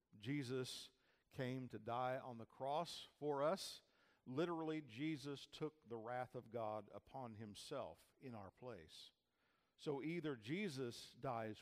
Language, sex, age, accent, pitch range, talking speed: English, male, 50-69, American, 110-155 Hz, 130 wpm